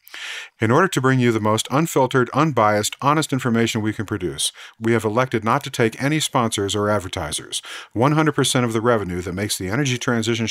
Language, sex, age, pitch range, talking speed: English, male, 50-69, 105-125 Hz, 190 wpm